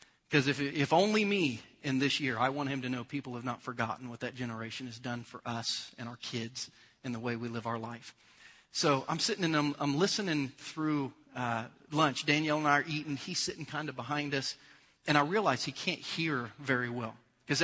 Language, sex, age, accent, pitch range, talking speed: English, male, 40-59, American, 125-155 Hz, 220 wpm